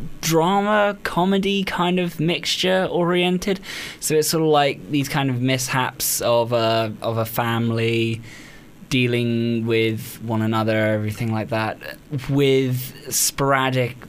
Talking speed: 125 wpm